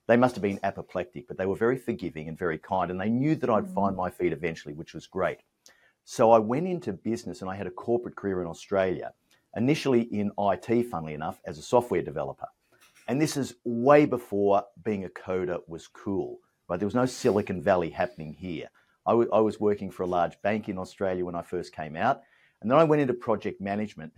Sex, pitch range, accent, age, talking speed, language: male, 95-120 Hz, Australian, 50-69, 220 wpm, English